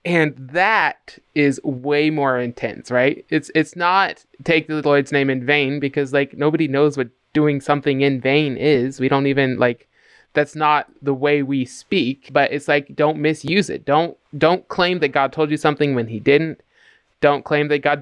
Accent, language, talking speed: American, English, 190 wpm